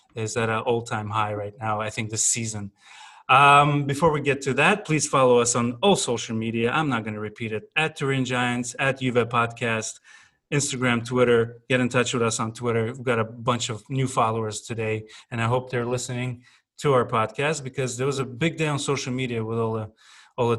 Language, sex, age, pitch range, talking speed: English, male, 30-49, 115-135 Hz, 215 wpm